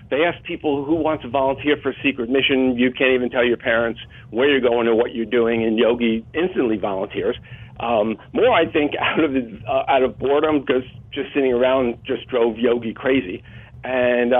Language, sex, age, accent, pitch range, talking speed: English, male, 50-69, American, 115-135 Hz, 200 wpm